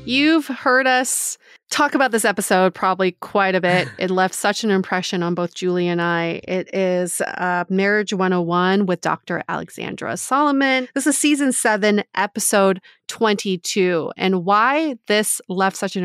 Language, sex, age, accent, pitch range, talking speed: English, female, 30-49, American, 185-230 Hz, 155 wpm